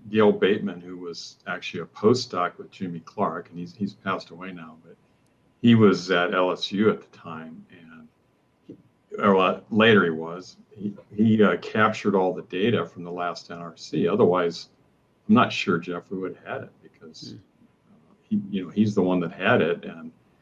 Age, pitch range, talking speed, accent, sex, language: 50-69, 85-100 Hz, 180 wpm, American, male, English